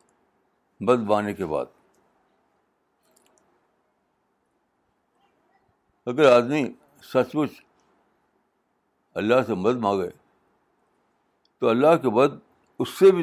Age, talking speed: 60-79, 85 wpm